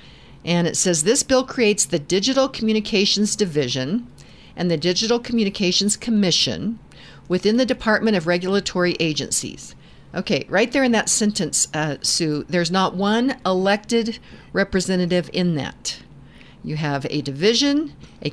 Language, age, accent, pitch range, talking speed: English, 50-69, American, 155-210 Hz, 135 wpm